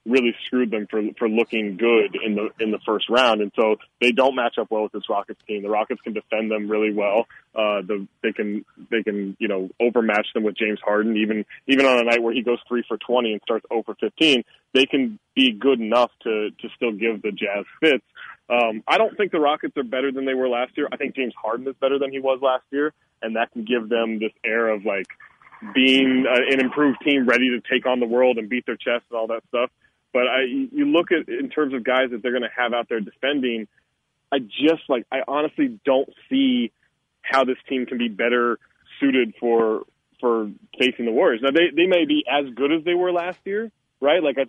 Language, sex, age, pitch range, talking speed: English, male, 20-39, 115-135 Hz, 235 wpm